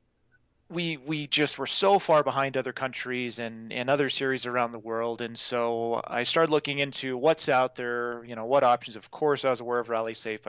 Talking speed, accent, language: 205 wpm, American, English